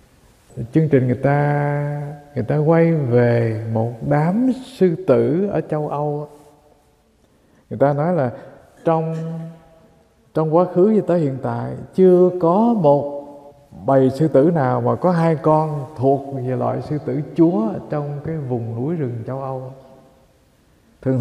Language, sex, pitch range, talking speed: English, male, 130-165 Hz, 145 wpm